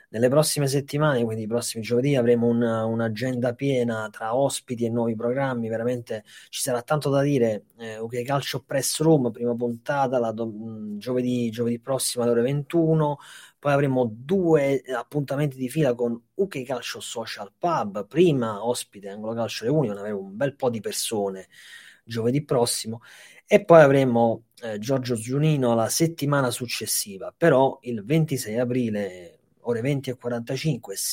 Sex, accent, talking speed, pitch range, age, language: male, native, 150 wpm, 110-140 Hz, 30-49, Italian